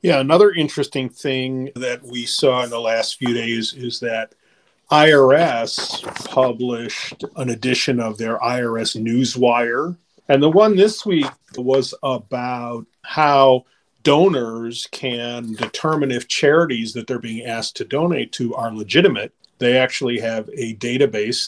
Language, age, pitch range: English, 40-59, 110-135 Hz